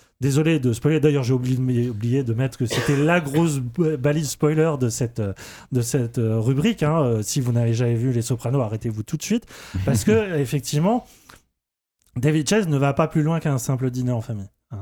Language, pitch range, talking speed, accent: French, 120-160 Hz, 190 wpm, French